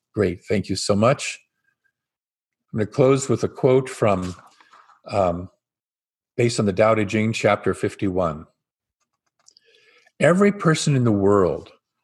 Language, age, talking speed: English, 50-69, 135 wpm